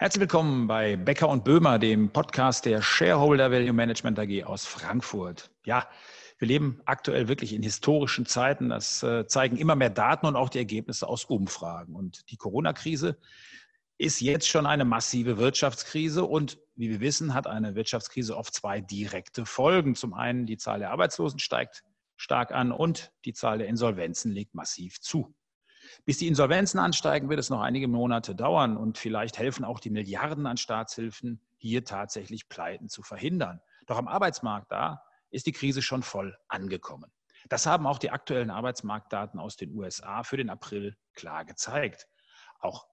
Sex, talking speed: male, 165 wpm